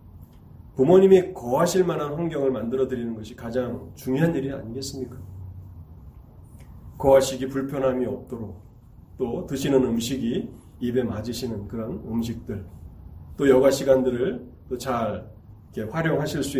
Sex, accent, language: male, native, Korean